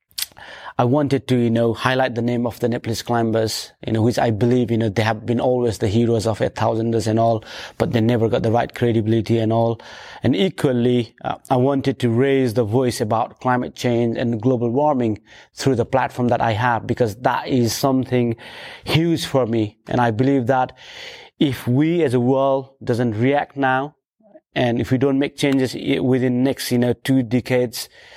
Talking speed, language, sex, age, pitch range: 195 wpm, English, male, 30-49, 115-130 Hz